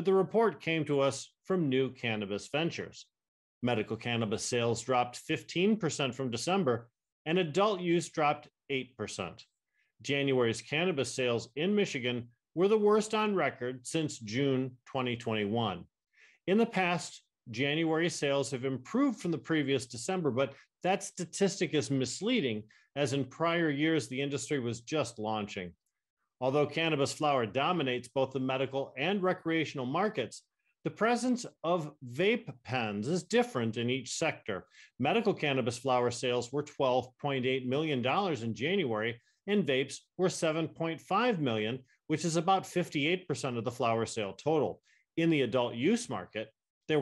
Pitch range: 125-175 Hz